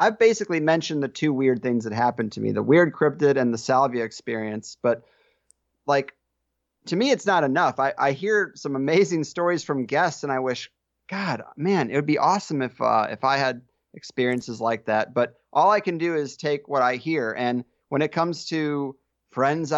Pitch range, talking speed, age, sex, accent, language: 130-165 Hz, 200 wpm, 30-49, male, American, English